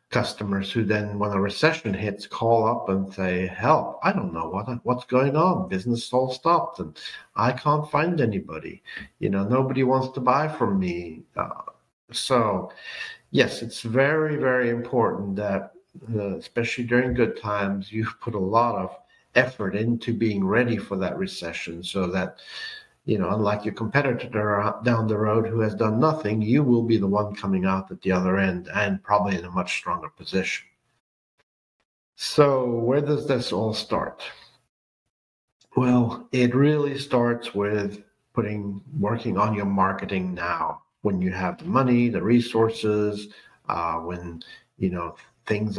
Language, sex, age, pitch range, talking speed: English, male, 60-79, 100-125 Hz, 160 wpm